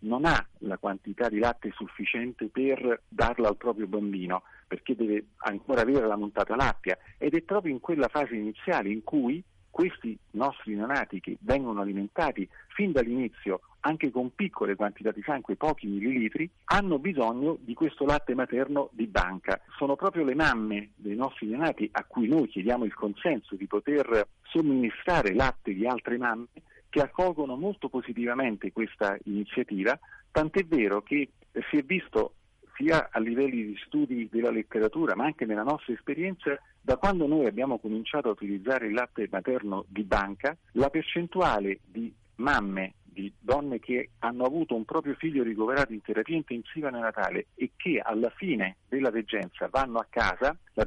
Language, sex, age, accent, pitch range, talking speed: Italian, male, 40-59, native, 105-145 Hz, 160 wpm